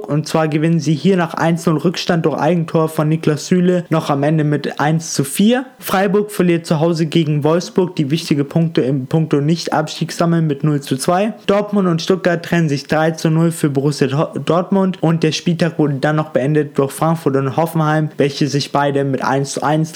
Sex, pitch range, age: male, 145-175 Hz, 20-39